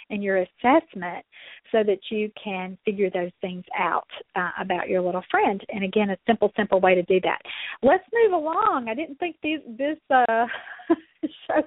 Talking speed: 175 wpm